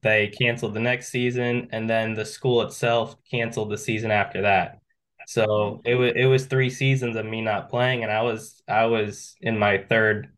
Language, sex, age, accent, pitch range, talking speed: English, male, 10-29, American, 100-115 Hz, 185 wpm